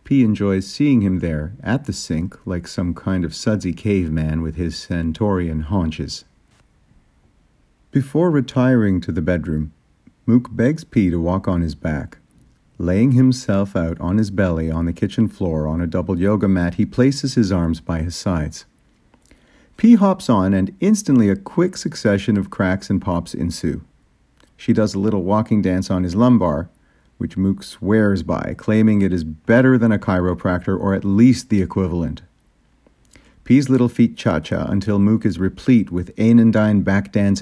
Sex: male